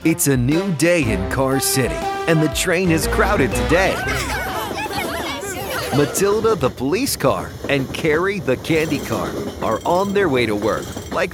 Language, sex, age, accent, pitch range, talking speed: English, male, 40-59, American, 130-190 Hz, 155 wpm